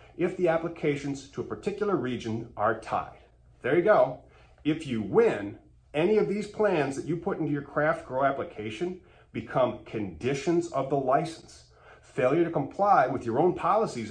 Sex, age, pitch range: male, 30-49, 120-180 Hz